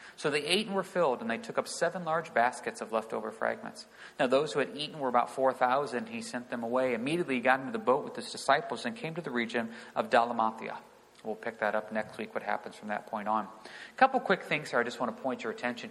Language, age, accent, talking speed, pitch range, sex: English, 40-59, American, 255 wpm, 120-180 Hz, male